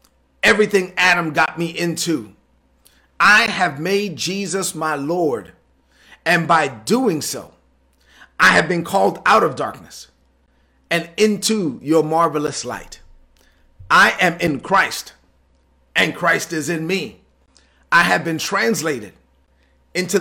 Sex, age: male, 40-59